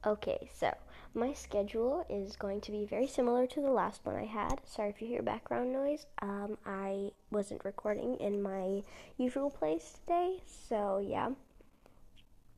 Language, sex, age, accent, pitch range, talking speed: English, female, 10-29, American, 205-260 Hz, 155 wpm